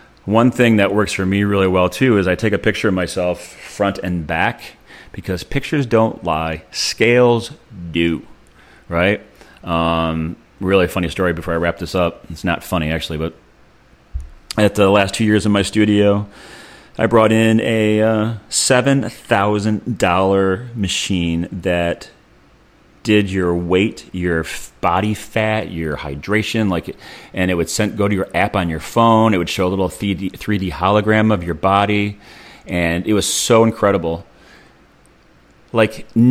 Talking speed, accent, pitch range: 150 wpm, American, 90-110 Hz